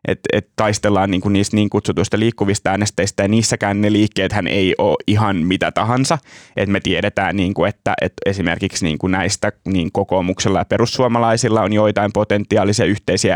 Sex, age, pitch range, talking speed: male, 20-39, 95-110 Hz, 155 wpm